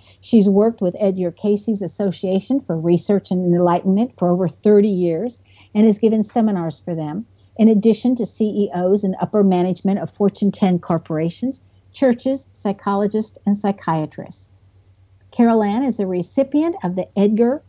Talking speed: 145 wpm